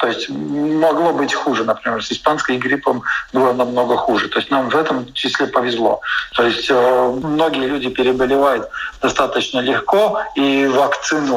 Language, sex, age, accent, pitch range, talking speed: Russian, male, 50-69, native, 130-155 Hz, 150 wpm